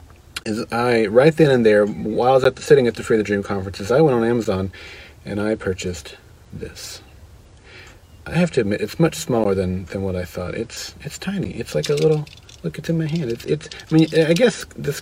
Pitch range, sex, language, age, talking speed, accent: 100-135 Hz, male, English, 40-59, 230 wpm, American